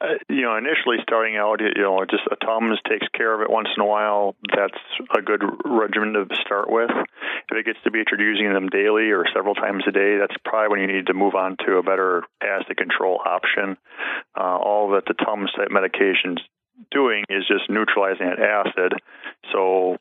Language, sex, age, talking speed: English, male, 40-59, 200 wpm